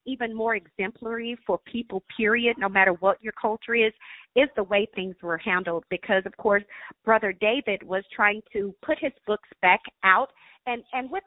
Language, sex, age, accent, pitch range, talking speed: English, female, 40-59, American, 190-220 Hz, 180 wpm